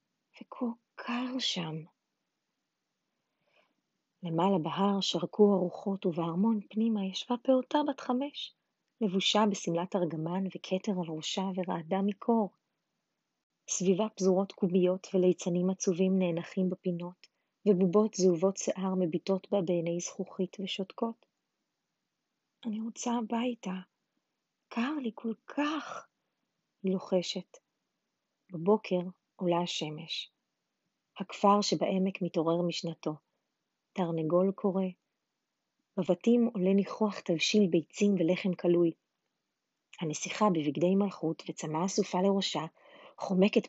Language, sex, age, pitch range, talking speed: Hebrew, female, 30-49, 180-220 Hz, 95 wpm